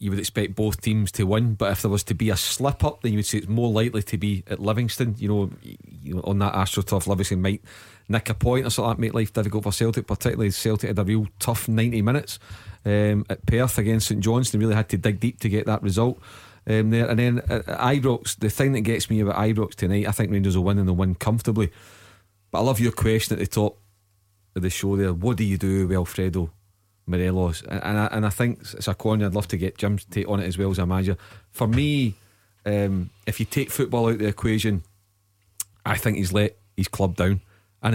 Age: 30-49